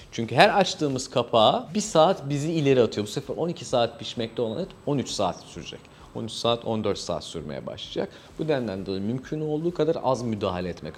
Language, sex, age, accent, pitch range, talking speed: Turkish, male, 40-59, native, 110-155 Hz, 185 wpm